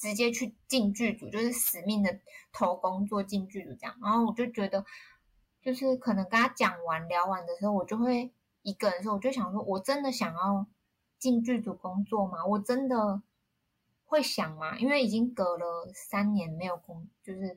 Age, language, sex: 20-39, Chinese, female